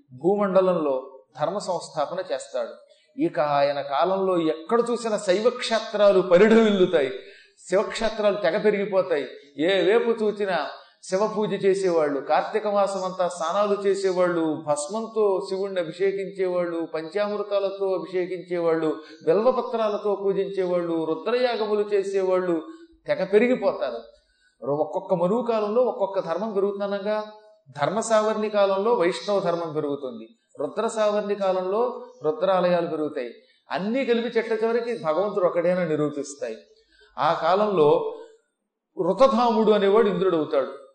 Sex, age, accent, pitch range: male, 30-49, native, 170-220 Hz